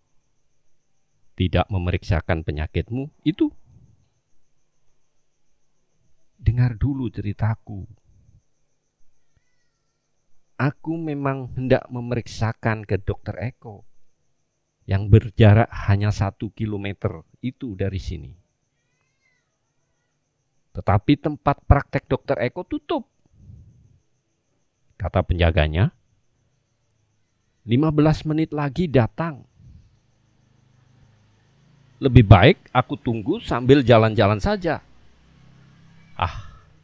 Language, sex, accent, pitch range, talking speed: Indonesian, male, native, 105-130 Hz, 70 wpm